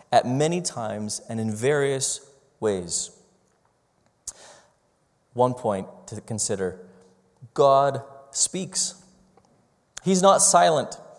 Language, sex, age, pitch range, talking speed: English, male, 20-39, 120-160 Hz, 85 wpm